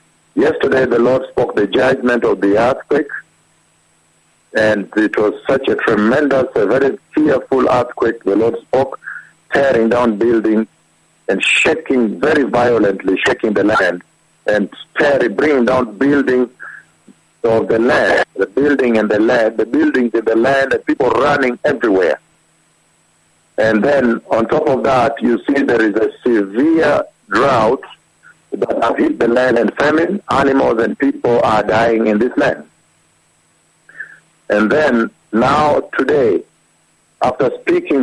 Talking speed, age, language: 140 wpm, 60-79, English